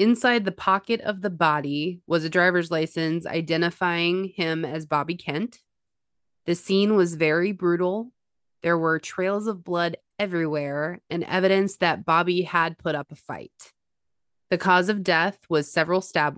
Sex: female